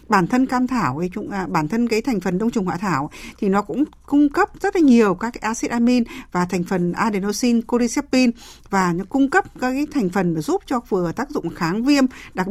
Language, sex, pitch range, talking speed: Vietnamese, female, 185-255 Hz, 225 wpm